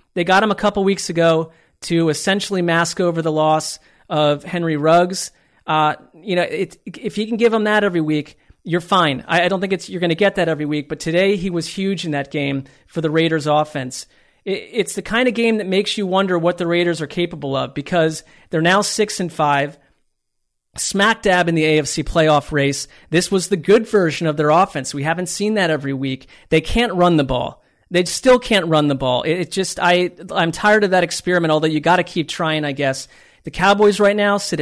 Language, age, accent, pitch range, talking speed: English, 40-59, American, 155-190 Hz, 220 wpm